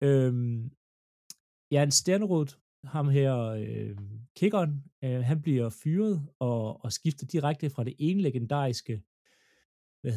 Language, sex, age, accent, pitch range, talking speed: Danish, male, 30-49, native, 125-165 Hz, 120 wpm